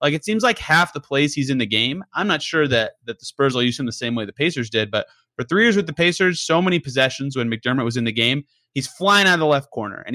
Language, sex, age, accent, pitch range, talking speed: English, male, 30-49, American, 125-160 Hz, 300 wpm